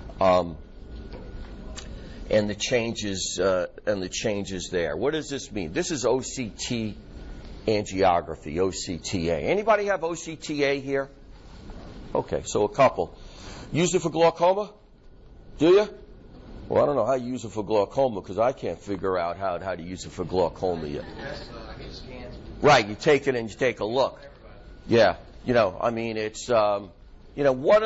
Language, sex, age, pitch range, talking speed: English, male, 60-79, 100-145 Hz, 160 wpm